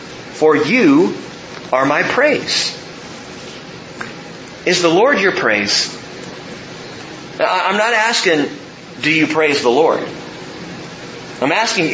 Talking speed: 100 wpm